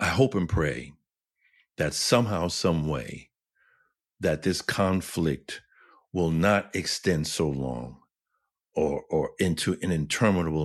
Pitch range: 75-100 Hz